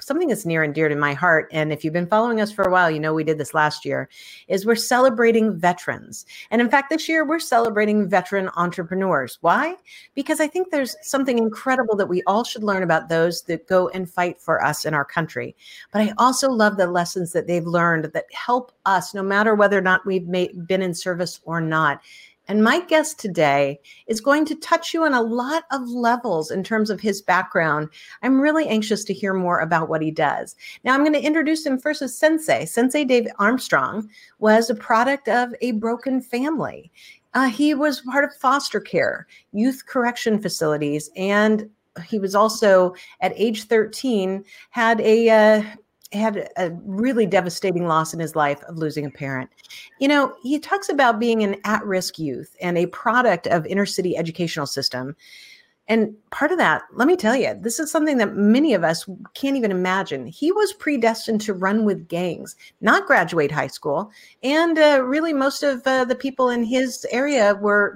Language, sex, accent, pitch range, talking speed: English, female, American, 180-255 Hz, 195 wpm